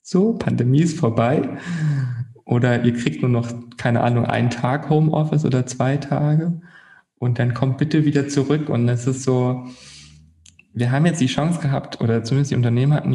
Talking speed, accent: 175 wpm, German